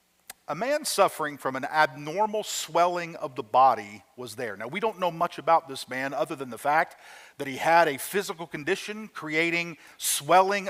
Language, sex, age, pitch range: English, male, 50-69, 165-210 Hz